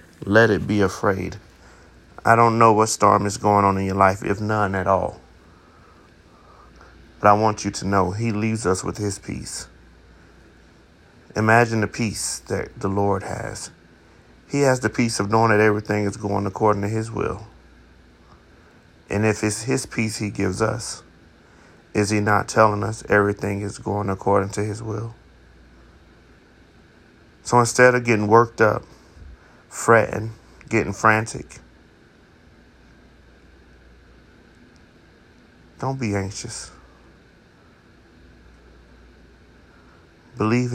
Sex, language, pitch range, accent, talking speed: male, English, 85-110 Hz, American, 125 wpm